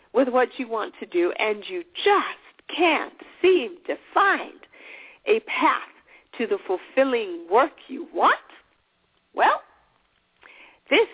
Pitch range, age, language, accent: 235-375 Hz, 50-69, English, American